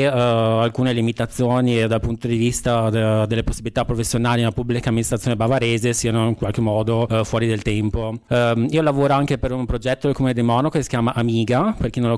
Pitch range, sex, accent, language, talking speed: 115-125 Hz, male, native, Italian, 205 wpm